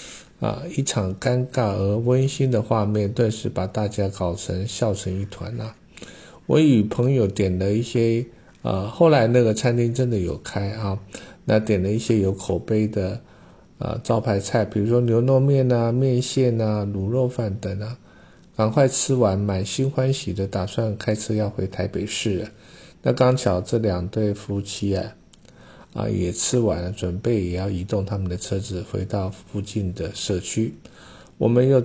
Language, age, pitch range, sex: Chinese, 50-69, 100-125 Hz, male